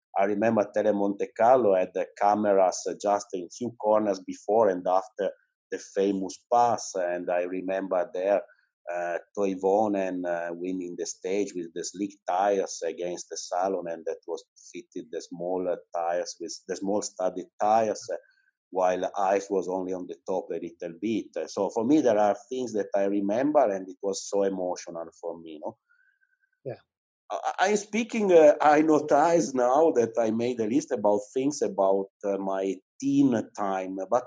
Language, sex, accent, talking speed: English, male, Italian, 165 wpm